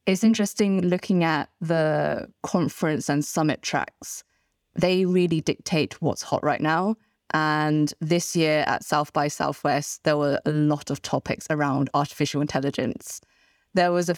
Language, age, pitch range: English, 20-39, 150-180 Hz